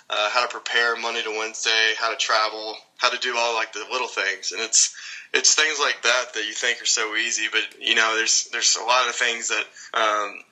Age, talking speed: 20-39, 235 wpm